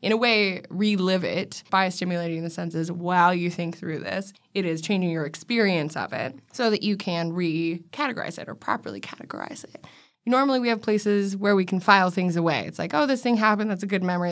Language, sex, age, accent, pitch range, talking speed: English, female, 20-39, American, 175-225 Hz, 215 wpm